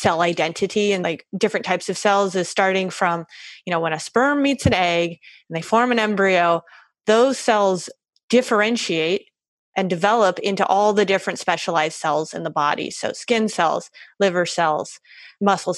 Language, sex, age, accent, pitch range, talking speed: English, female, 20-39, American, 180-205 Hz, 165 wpm